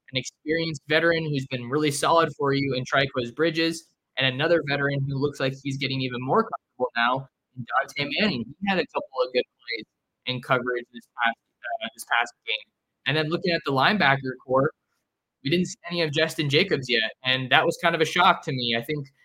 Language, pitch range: English, 130-155 Hz